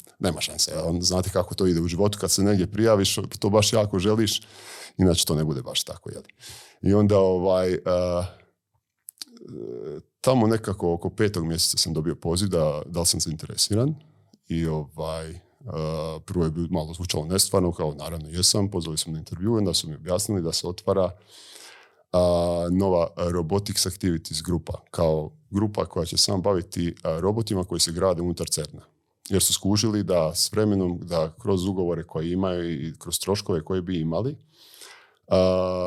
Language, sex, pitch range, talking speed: Croatian, male, 85-100 Hz, 165 wpm